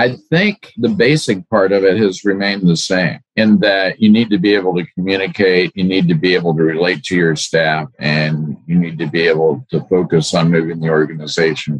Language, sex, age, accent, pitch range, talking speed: English, male, 50-69, American, 75-95 Hz, 215 wpm